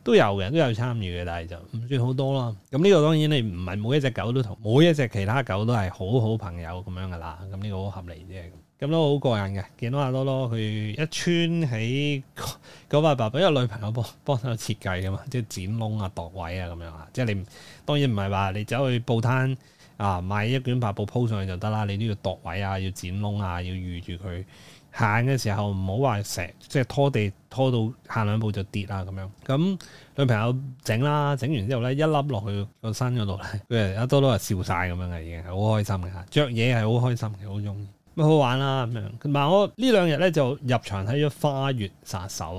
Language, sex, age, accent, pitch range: Chinese, male, 20-39, native, 100-135 Hz